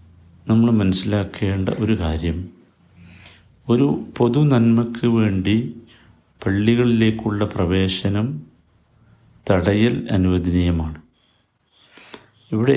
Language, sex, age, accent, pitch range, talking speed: Malayalam, male, 50-69, native, 95-120 Hz, 60 wpm